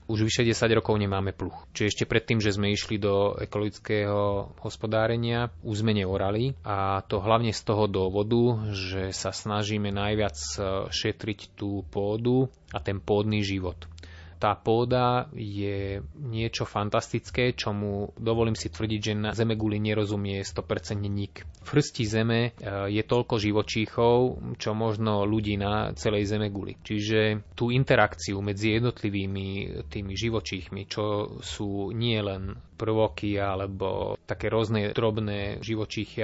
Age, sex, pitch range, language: 20-39, male, 100-115 Hz, Slovak